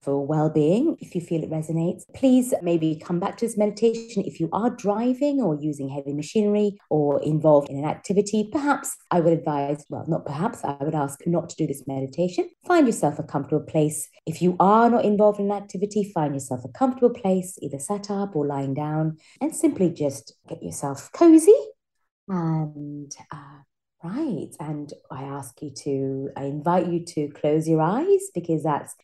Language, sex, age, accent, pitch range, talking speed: English, female, 30-49, British, 150-220 Hz, 180 wpm